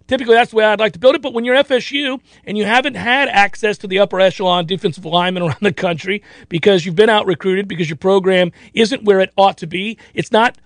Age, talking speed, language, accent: 40-59, 235 wpm, English, American